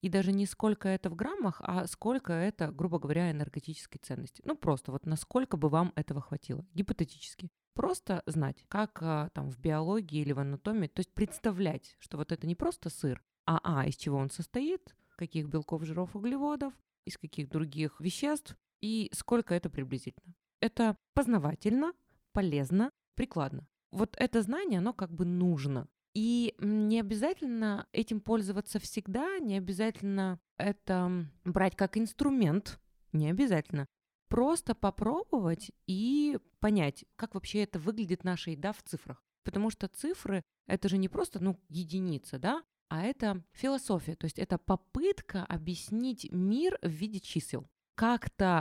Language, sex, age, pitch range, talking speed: Russian, female, 20-39, 165-220 Hz, 145 wpm